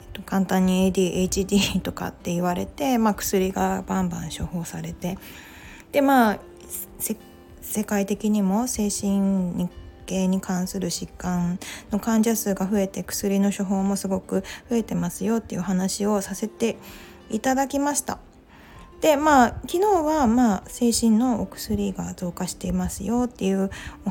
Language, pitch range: Japanese, 190-250 Hz